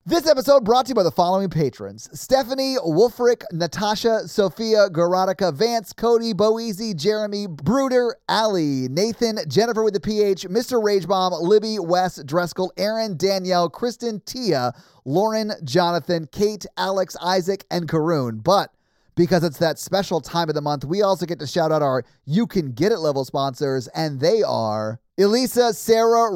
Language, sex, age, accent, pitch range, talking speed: English, male, 30-49, American, 170-210 Hz, 155 wpm